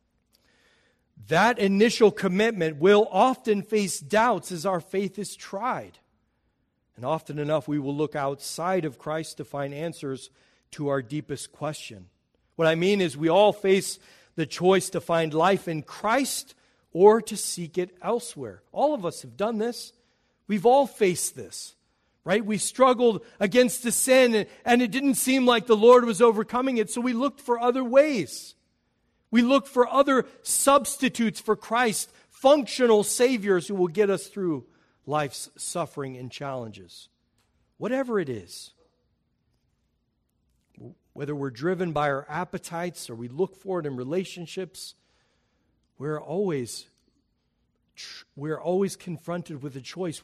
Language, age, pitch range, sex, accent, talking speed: English, 40-59, 150-220 Hz, male, American, 145 wpm